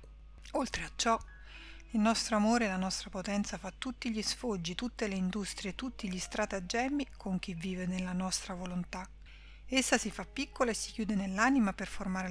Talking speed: 175 wpm